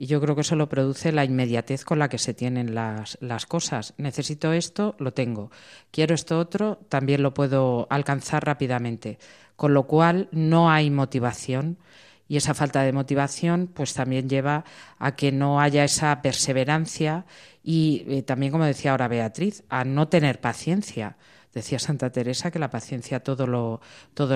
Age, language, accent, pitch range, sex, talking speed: 40-59, Spanish, Spanish, 130-155 Hz, female, 165 wpm